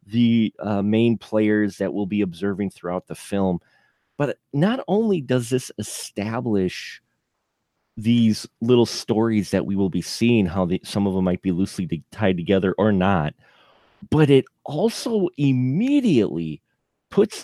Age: 30-49